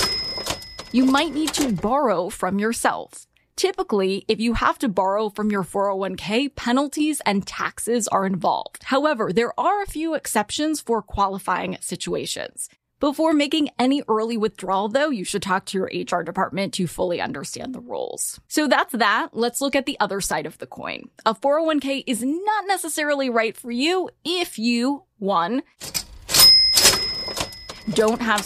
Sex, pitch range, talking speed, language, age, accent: female, 195-275 Hz, 155 wpm, English, 20-39, American